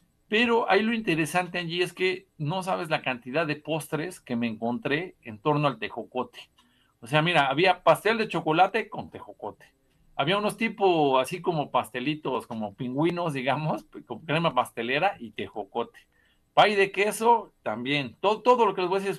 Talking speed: 175 wpm